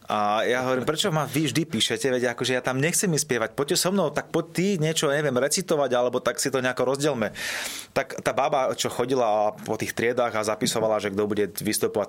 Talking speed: 215 wpm